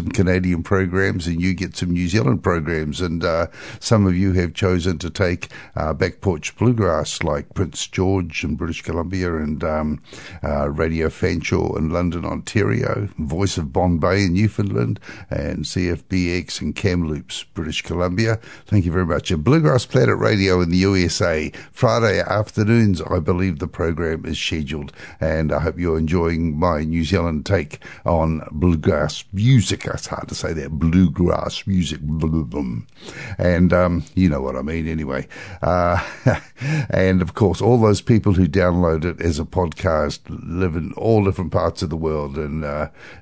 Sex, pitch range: male, 80-95 Hz